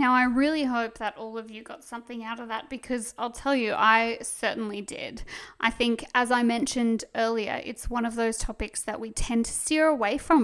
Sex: female